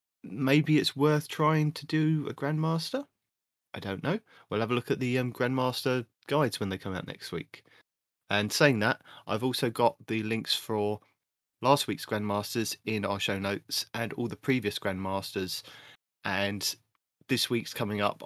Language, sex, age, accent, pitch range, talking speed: English, male, 30-49, British, 100-130 Hz, 170 wpm